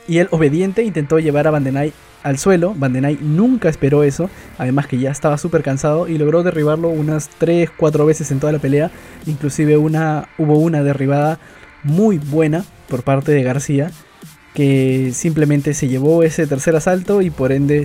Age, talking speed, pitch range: 20-39, 165 wpm, 135-160 Hz